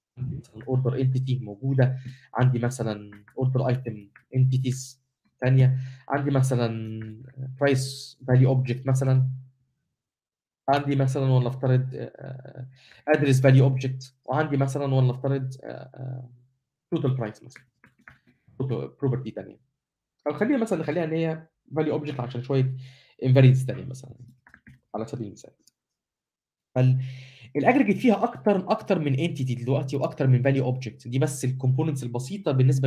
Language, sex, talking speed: Arabic, male, 115 wpm